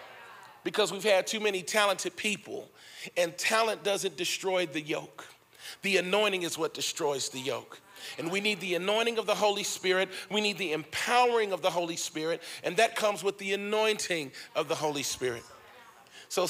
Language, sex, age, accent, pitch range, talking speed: English, male, 40-59, American, 165-220 Hz, 175 wpm